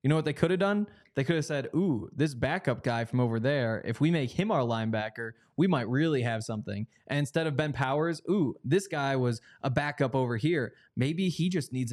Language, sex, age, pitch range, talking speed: English, male, 20-39, 125-160 Hz, 230 wpm